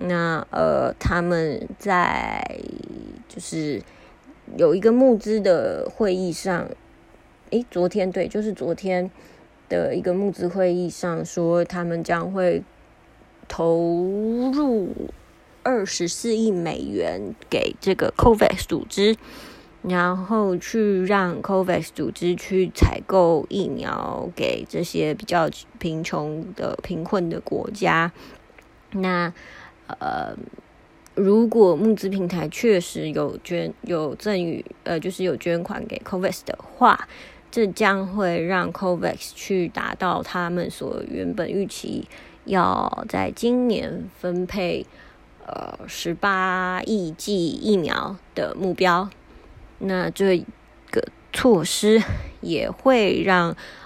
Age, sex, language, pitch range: 20-39, female, English, 175-210 Hz